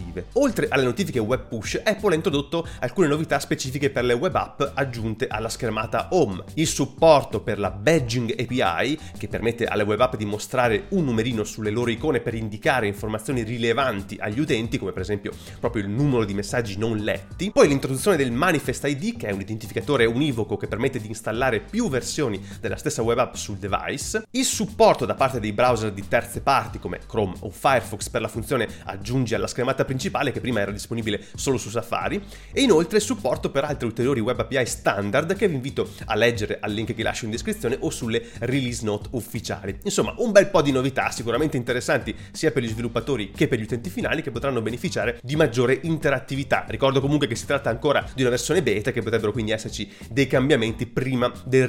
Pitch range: 110-145 Hz